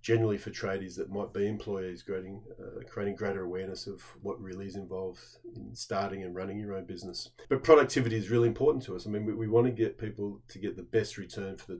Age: 30-49